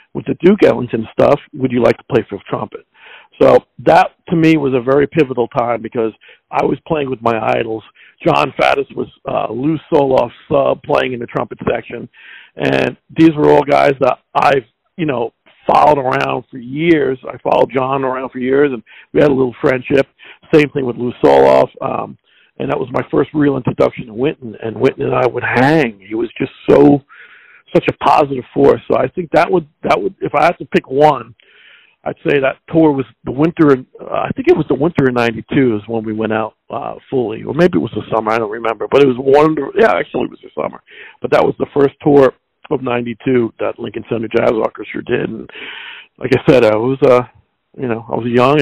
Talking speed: 220 wpm